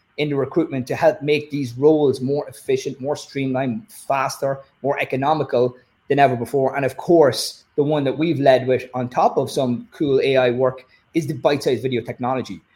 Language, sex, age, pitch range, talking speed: English, male, 30-49, 125-150 Hz, 185 wpm